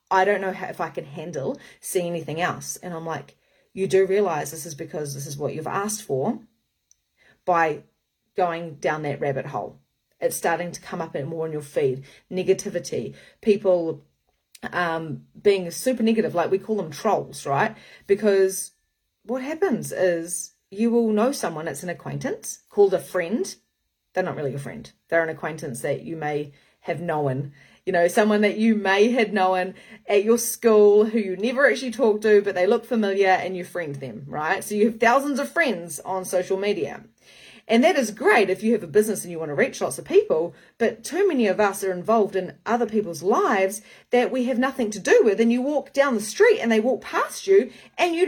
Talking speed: 200 wpm